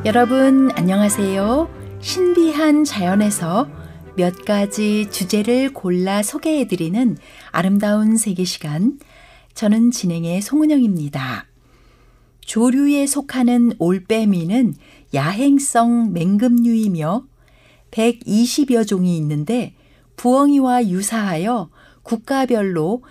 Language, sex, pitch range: Korean, female, 185-245 Hz